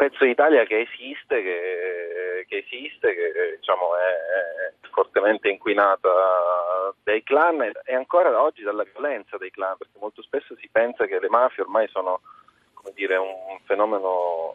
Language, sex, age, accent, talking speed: Italian, male, 30-49, native, 155 wpm